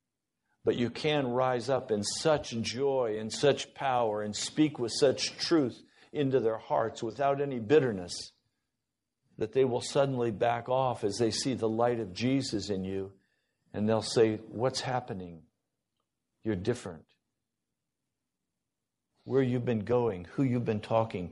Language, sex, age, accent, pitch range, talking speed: English, male, 50-69, American, 115-165 Hz, 145 wpm